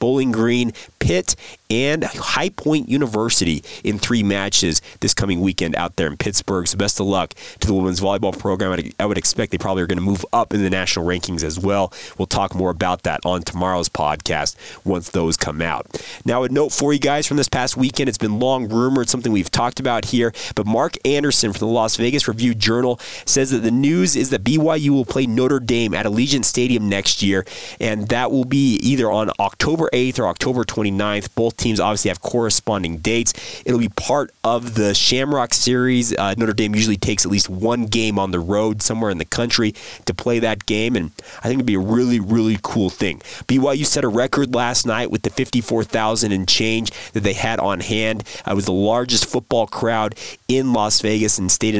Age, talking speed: 30-49, 210 wpm